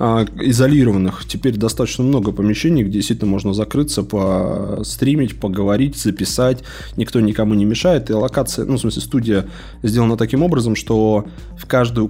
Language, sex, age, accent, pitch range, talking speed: Russian, male, 20-39, native, 105-130 Hz, 140 wpm